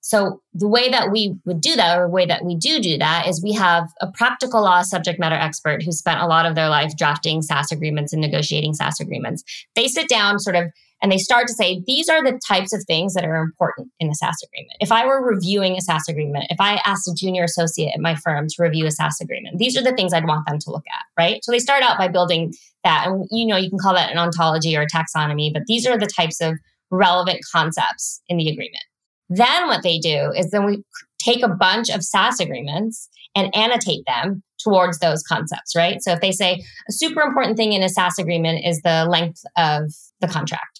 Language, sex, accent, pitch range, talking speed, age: English, female, American, 165-205 Hz, 240 wpm, 20-39